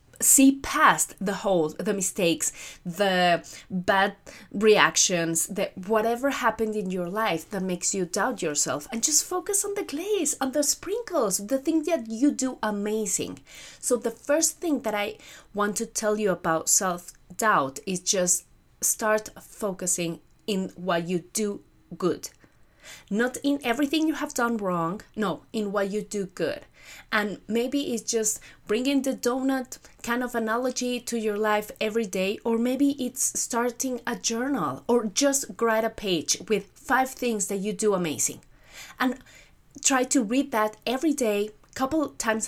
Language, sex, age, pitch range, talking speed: English, female, 30-49, 195-245 Hz, 155 wpm